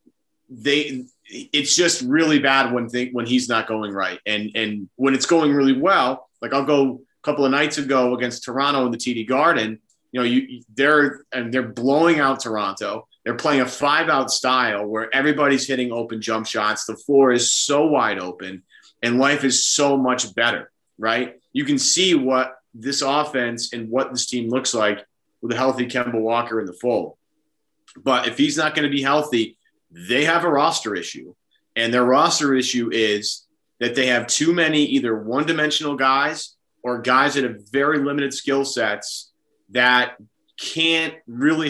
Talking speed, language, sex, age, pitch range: 180 wpm, English, male, 30-49, 120-145 Hz